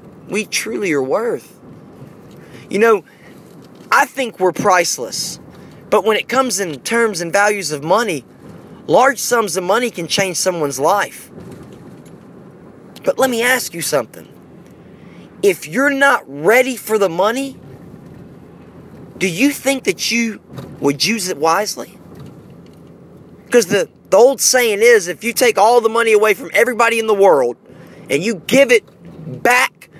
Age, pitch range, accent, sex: 20-39, 195-250 Hz, American, male